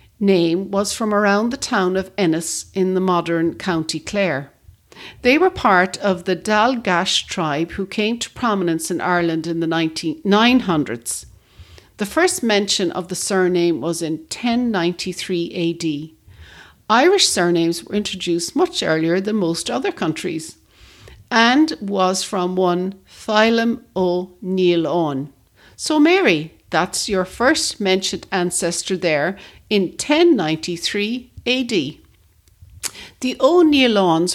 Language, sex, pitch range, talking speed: English, female, 165-210 Hz, 120 wpm